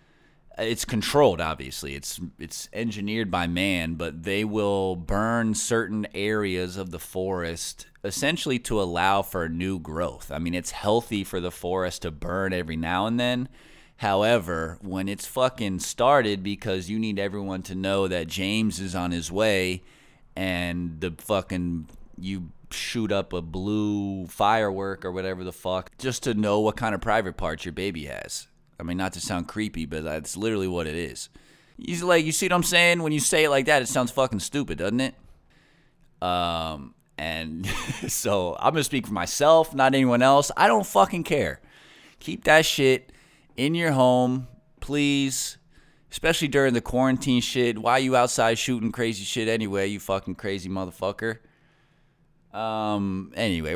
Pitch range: 90-125 Hz